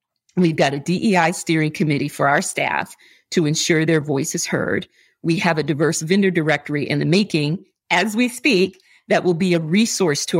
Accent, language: American, English